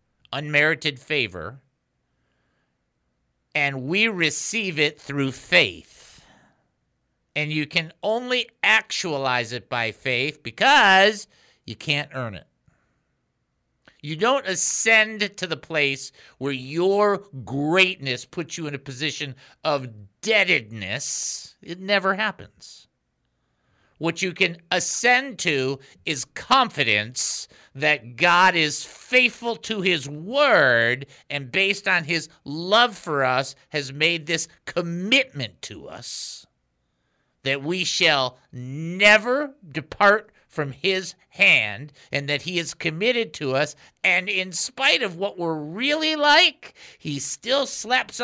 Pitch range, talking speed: 140-200 Hz, 115 wpm